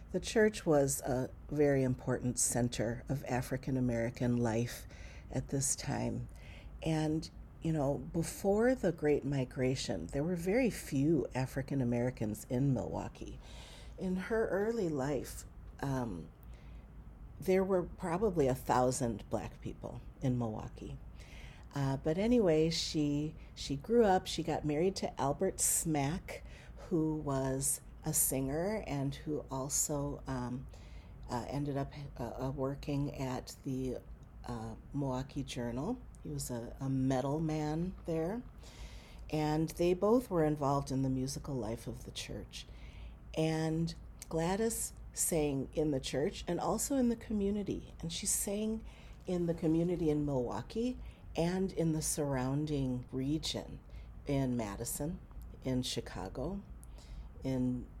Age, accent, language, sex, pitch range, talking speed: 50-69, American, English, female, 125-160 Hz, 125 wpm